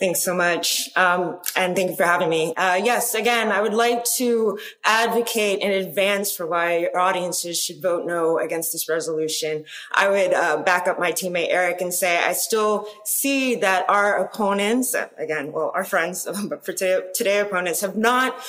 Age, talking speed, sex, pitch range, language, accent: 20-39, 180 wpm, female, 180-230 Hz, English, American